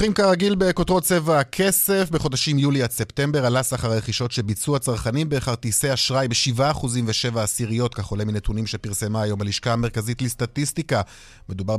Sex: male